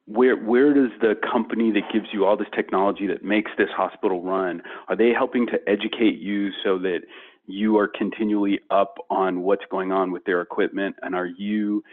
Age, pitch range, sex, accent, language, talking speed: 40-59, 95-120 Hz, male, American, English, 190 wpm